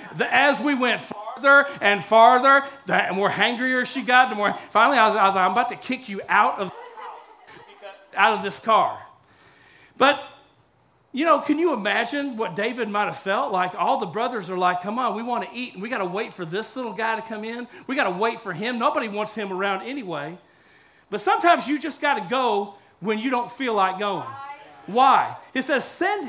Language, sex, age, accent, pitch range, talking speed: English, male, 40-59, American, 215-295 Hz, 215 wpm